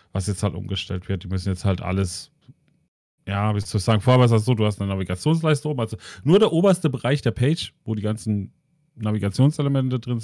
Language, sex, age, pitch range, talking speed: German, male, 40-59, 95-110 Hz, 205 wpm